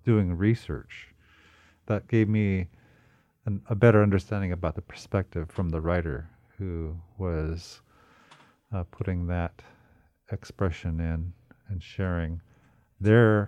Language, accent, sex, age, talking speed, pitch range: English, American, male, 50-69, 105 wpm, 90-110 Hz